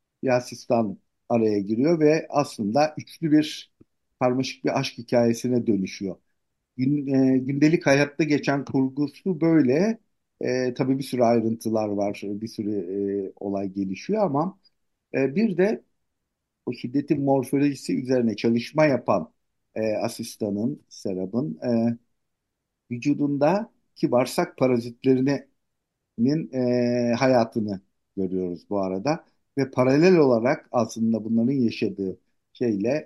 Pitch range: 110-140 Hz